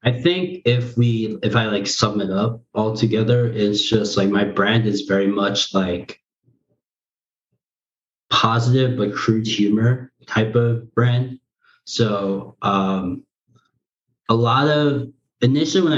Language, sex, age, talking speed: English, male, 20-39, 130 wpm